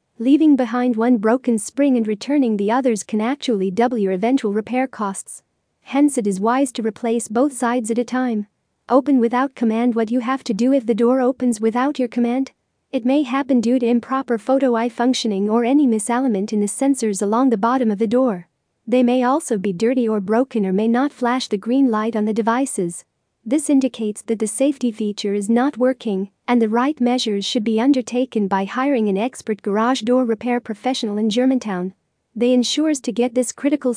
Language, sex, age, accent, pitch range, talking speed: English, female, 40-59, American, 220-255 Hz, 200 wpm